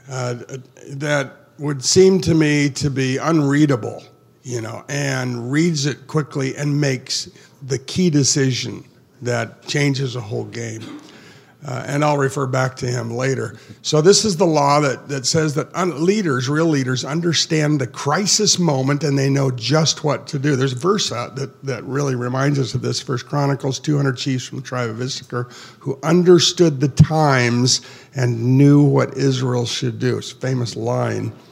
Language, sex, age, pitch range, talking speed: English, male, 50-69, 125-145 Hz, 170 wpm